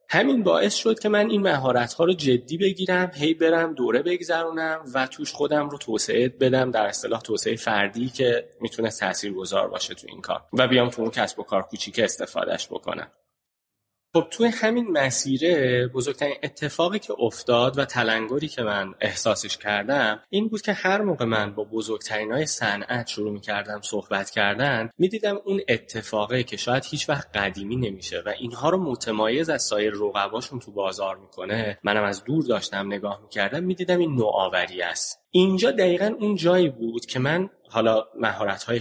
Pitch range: 105-155 Hz